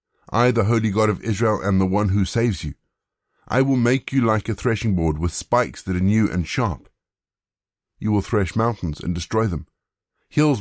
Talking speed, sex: 200 wpm, male